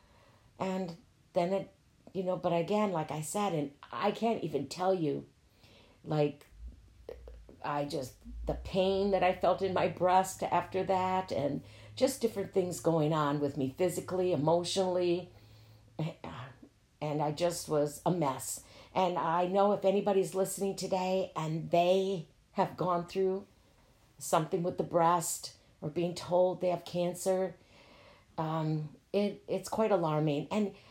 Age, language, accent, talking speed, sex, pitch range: 50-69, English, American, 140 wpm, female, 150-190 Hz